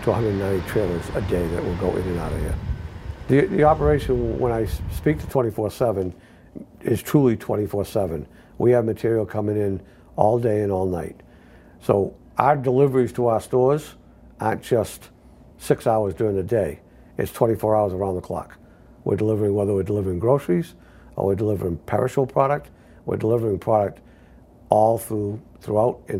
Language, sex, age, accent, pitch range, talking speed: English, male, 60-79, American, 95-120 Hz, 160 wpm